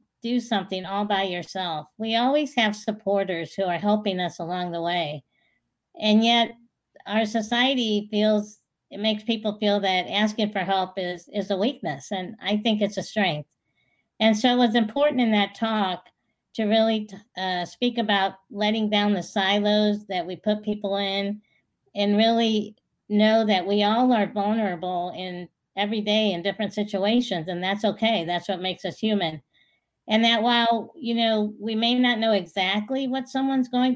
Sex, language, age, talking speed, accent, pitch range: female, English, 50-69, 170 wpm, American, 195-230 Hz